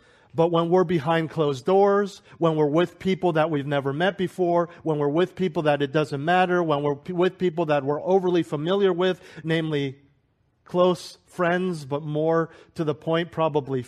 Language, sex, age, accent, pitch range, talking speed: English, male, 40-59, American, 130-165 Hz, 175 wpm